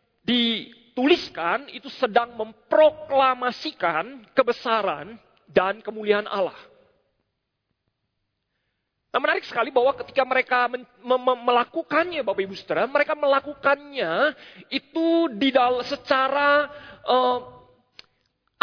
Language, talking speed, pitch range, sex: Indonesian, 85 wpm, 235-305 Hz, male